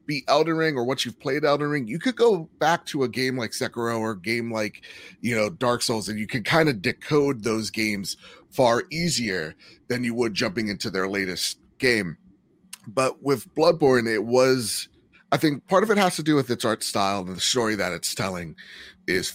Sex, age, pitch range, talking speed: male, 30-49, 105-135 Hz, 210 wpm